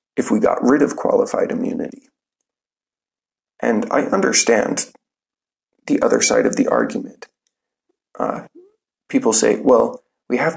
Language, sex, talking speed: English, male, 125 wpm